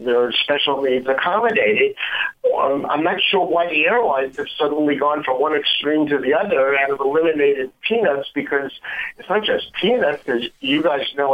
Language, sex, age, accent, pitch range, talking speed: English, male, 60-79, American, 145-195 Hz, 175 wpm